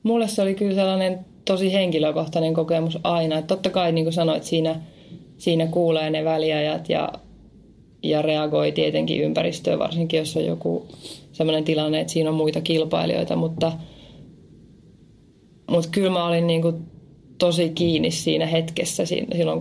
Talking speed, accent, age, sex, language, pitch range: 145 wpm, native, 20-39, female, Finnish, 150-170 Hz